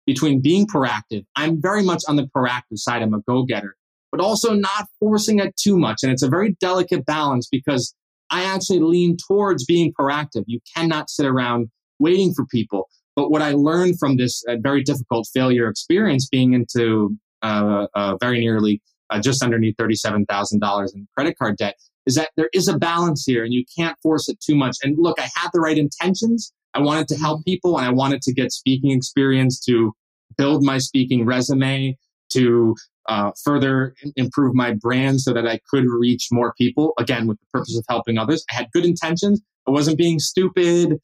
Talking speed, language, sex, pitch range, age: 190 wpm, English, male, 125-165 Hz, 20-39